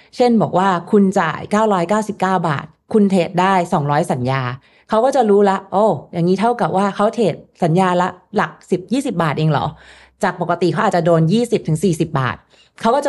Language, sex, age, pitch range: Thai, female, 30-49, 165-210 Hz